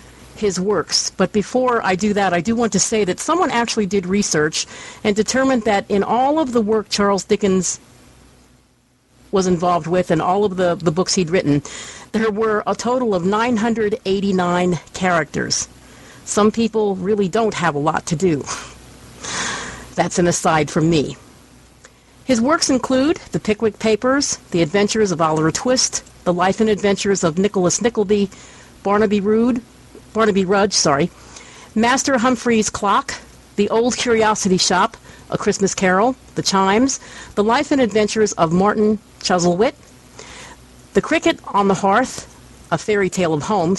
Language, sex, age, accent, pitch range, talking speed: English, female, 50-69, American, 185-225 Hz, 150 wpm